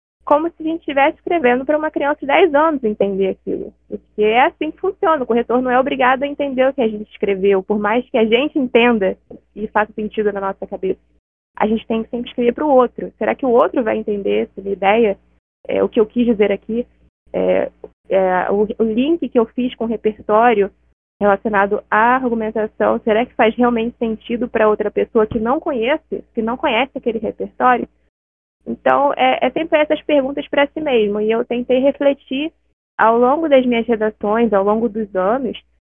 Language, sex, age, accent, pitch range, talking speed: Portuguese, female, 20-39, Brazilian, 220-285 Hz, 195 wpm